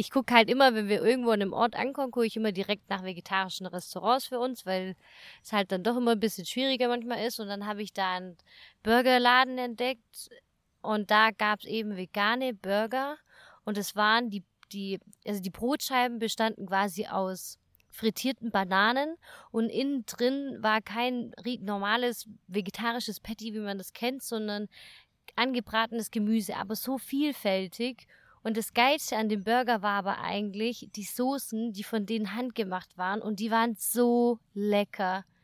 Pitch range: 205-235 Hz